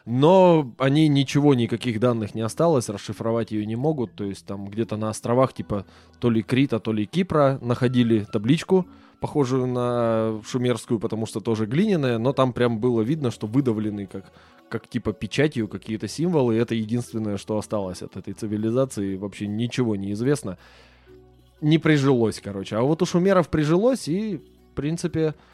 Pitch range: 105-130 Hz